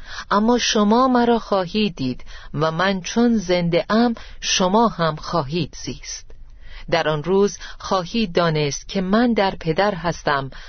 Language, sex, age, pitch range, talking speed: Persian, female, 40-59, 150-205 Hz, 135 wpm